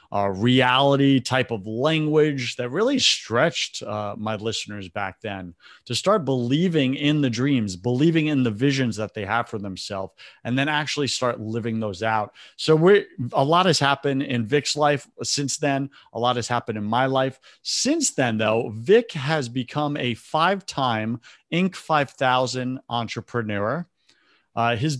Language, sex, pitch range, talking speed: English, male, 115-150 Hz, 160 wpm